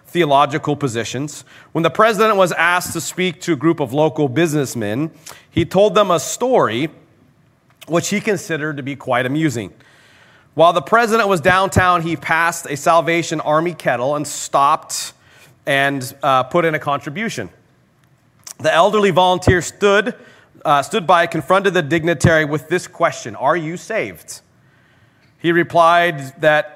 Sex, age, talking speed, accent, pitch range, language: male, 30-49, 145 wpm, American, 150-185 Hz, English